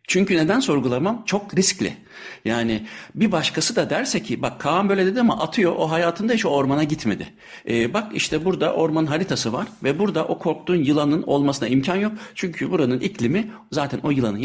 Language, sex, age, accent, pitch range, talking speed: Turkish, male, 60-79, native, 130-185 Hz, 185 wpm